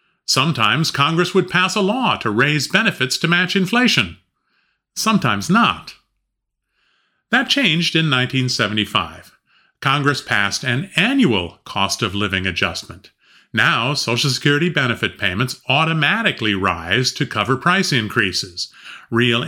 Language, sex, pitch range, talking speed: English, male, 110-175 Hz, 110 wpm